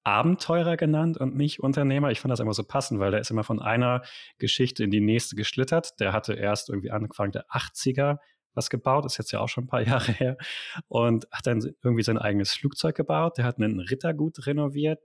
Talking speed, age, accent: 210 wpm, 30-49, German